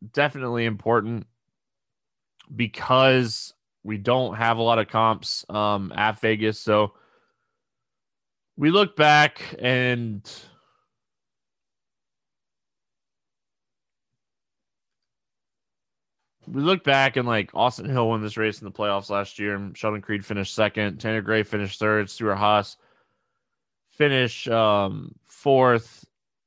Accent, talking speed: American, 105 wpm